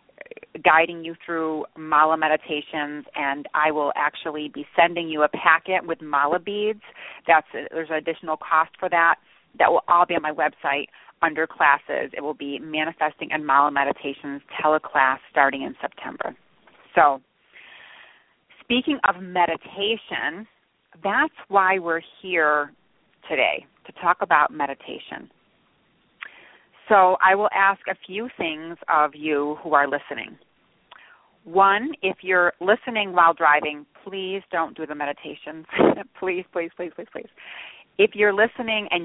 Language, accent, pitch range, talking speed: English, American, 150-185 Hz, 135 wpm